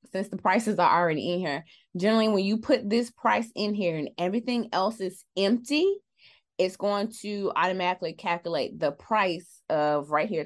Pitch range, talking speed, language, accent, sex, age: 170-230 Hz, 170 wpm, English, American, female, 20-39